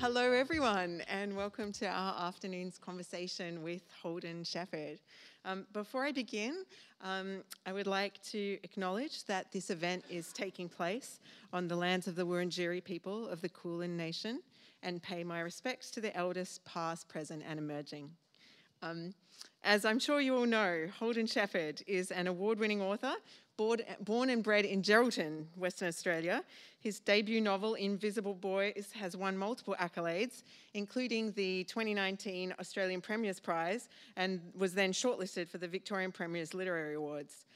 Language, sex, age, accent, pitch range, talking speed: English, female, 40-59, Australian, 175-215 Hz, 150 wpm